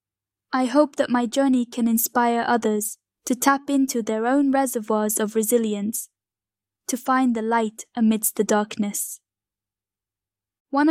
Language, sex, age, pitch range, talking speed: English, female, 10-29, 220-255 Hz, 130 wpm